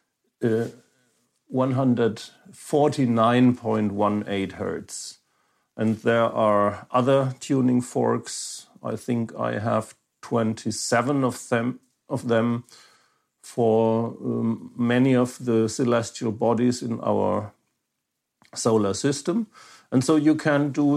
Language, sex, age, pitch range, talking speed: English, male, 50-69, 110-125 Hz, 95 wpm